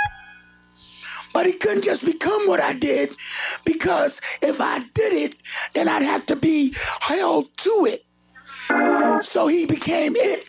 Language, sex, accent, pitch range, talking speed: English, male, American, 245-355 Hz, 145 wpm